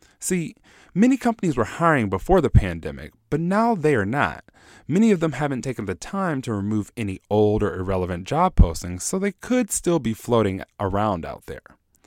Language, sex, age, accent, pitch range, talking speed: English, male, 20-39, American, 95-155 Hz, 185 wpm